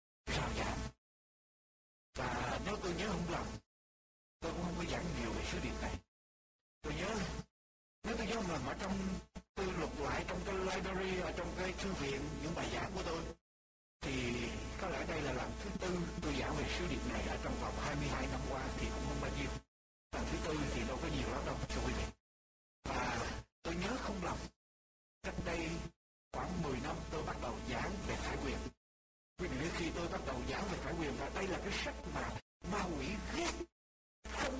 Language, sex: Vietnamese, male